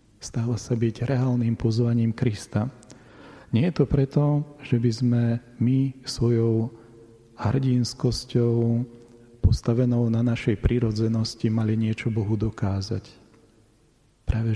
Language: Slovak